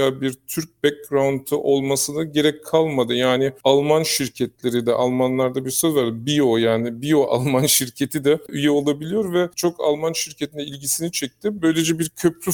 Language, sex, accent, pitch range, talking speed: Turkish, male, native, 125-155 Hz, 150 wpm